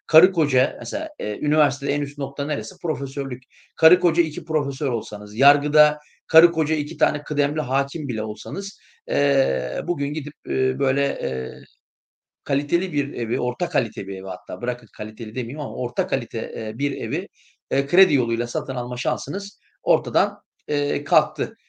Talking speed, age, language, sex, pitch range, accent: 150 wpm, 40-59, Turkish, male, 125-155 Hz, native